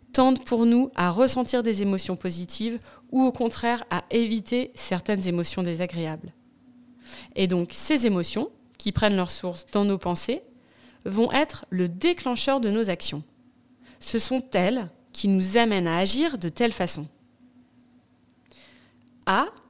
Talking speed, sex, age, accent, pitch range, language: 140 wpm, female, 30-49, French, 180-250 Hz, French